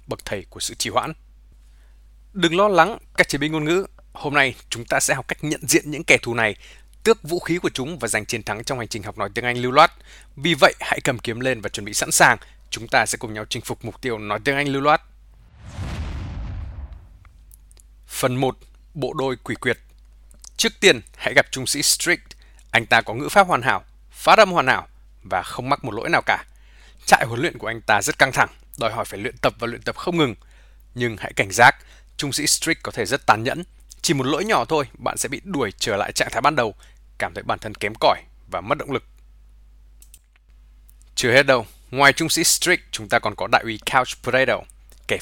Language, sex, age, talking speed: Vietnamese, male, 20-39, 230 wpm